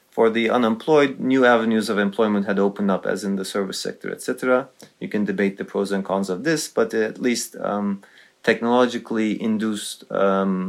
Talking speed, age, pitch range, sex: 180 wpm, 30-49, 100-115 Hz, male